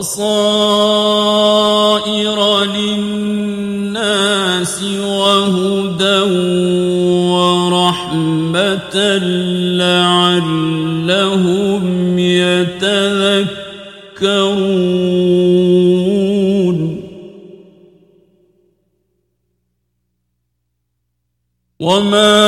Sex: male